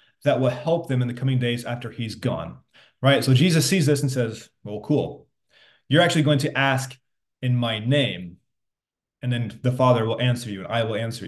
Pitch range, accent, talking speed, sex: 125-165 Hz, American, 205 wpm, male